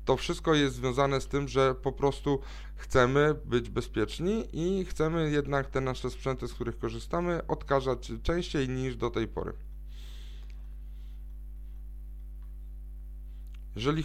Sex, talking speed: male, 120 wpm